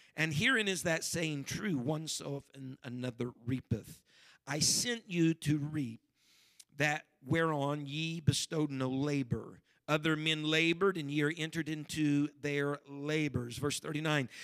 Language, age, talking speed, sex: English, 50-69, 135 wpm, male